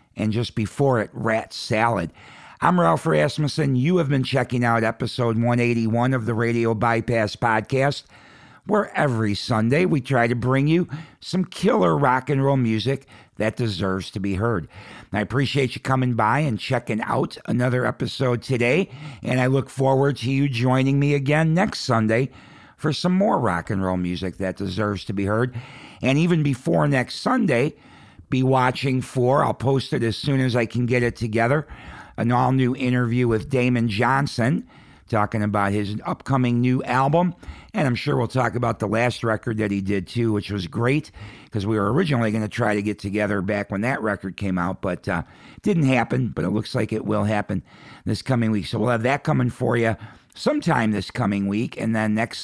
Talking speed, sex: 190 wpm, male